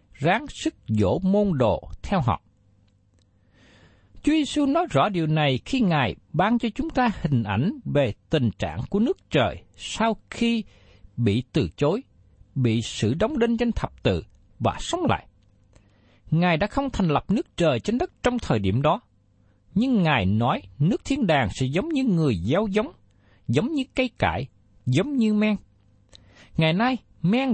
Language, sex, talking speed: Vietnamese, male, 170 wpm